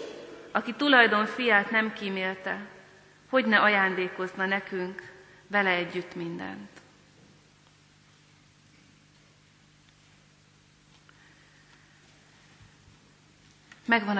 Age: 30-49